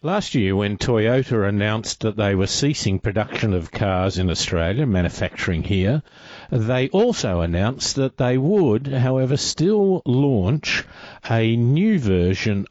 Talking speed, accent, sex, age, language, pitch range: 130 wpm, Australian, male, 50-69, English, 100-130 Hz